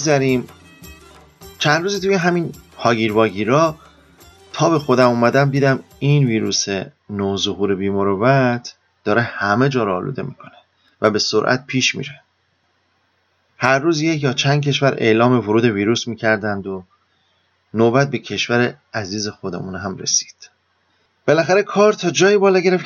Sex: male